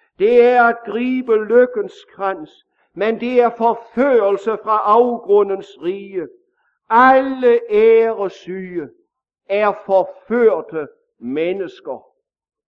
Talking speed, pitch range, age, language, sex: 80 wpm, 205-245 Hz, 60-79, English, male